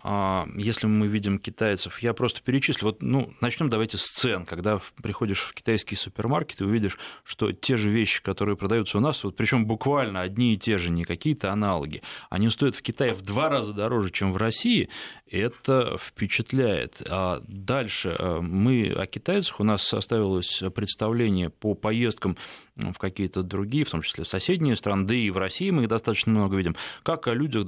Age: 20-39